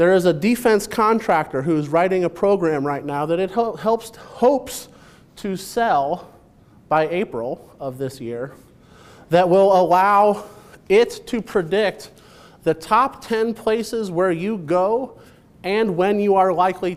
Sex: male